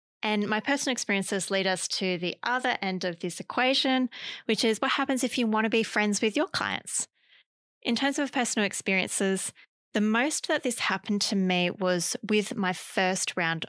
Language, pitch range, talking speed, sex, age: English, 185-230 Hz, 190 wpm, female, 20-39